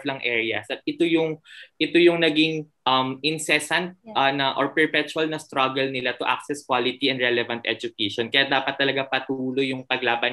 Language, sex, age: Filipino, male, 20-39